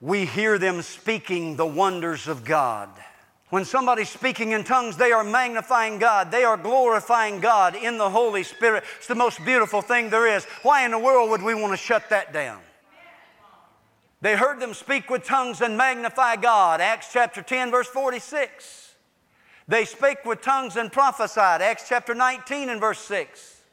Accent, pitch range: American, 155-255 Hz